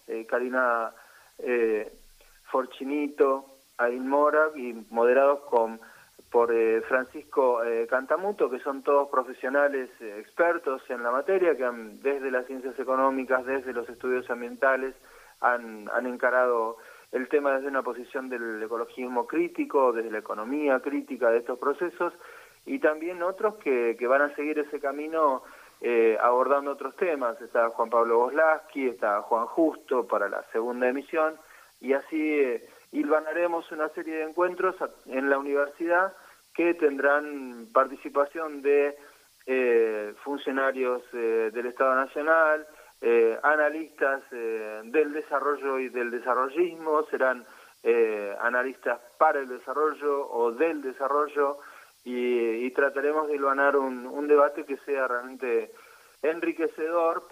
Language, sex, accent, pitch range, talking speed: Spanish, male, Argentinian, 125-155 Hz, 130 wpm